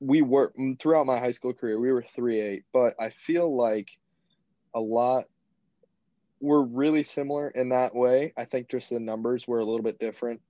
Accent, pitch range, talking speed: American, 110-135 Hz, 190 wpm